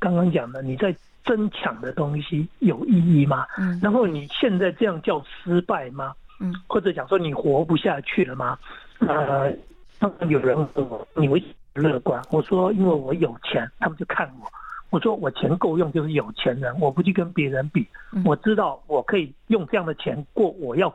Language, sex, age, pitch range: Chinese, male, 60-79, 155-215 Hz